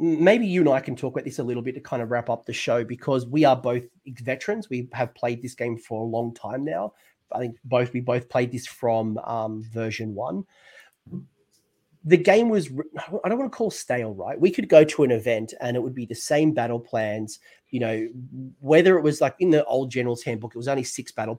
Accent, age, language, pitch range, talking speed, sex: Australian, 30-49, English, 120-145 Hz, 240 wpm, male